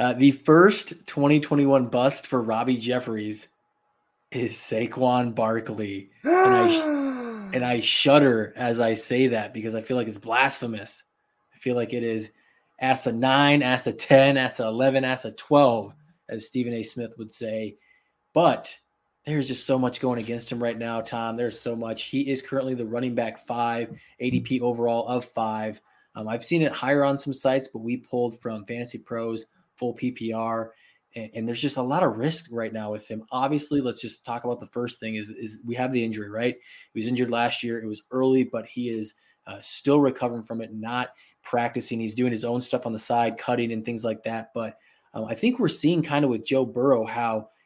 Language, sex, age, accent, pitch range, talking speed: English, male, 20-39, American, 115-135 Hz, 205 wpm